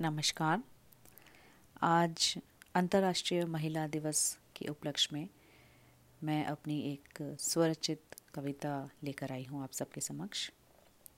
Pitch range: 145-175 Hz